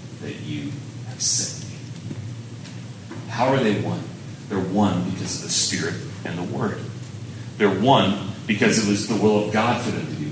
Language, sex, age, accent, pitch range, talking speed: English, male, 30-49, American, 100-120 Hz, 175 wpm